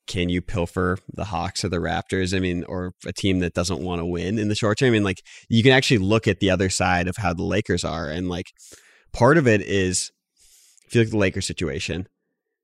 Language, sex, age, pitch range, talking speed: English, male, 20-39, 95-110 Hz, 240 wpm